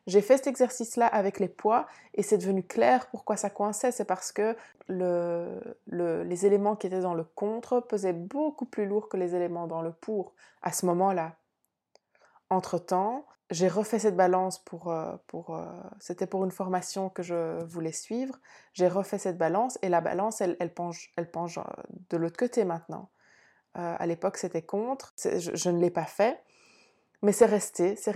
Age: 20-39